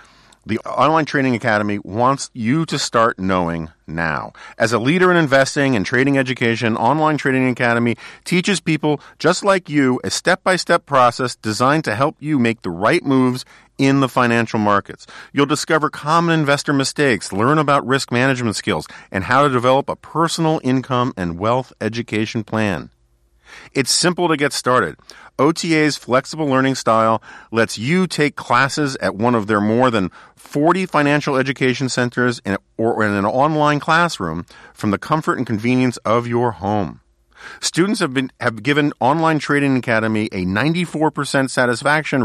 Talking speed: 155 wpm